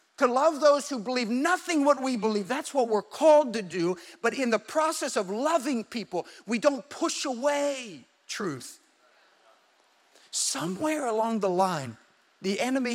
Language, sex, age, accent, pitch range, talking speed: English, male, 50-69, American, 155-220 Hz, 155 wpm